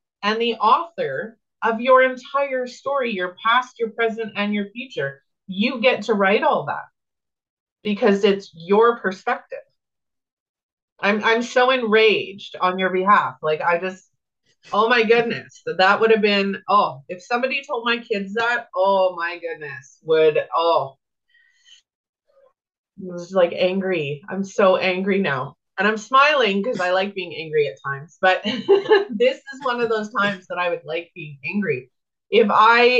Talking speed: 160 wpm